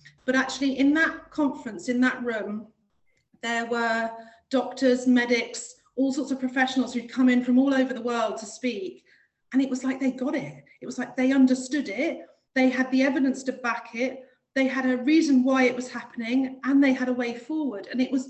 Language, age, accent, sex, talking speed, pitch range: English, 40-59, British, female, 205 wpm, 225-265 Hz